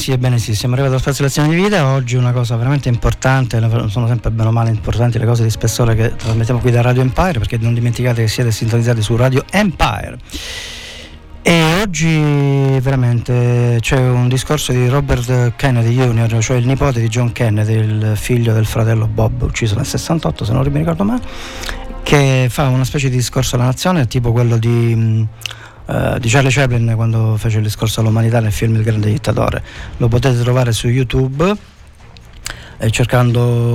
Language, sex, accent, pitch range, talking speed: Italian, male, native, 115-130 Hz, 180 wpm